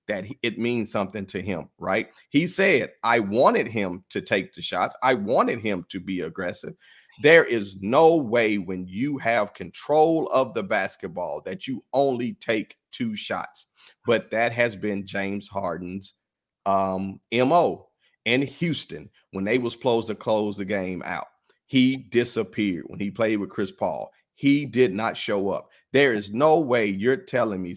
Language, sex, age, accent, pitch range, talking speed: English, male, 40-59, American, 100-135 Hz, 170 wpm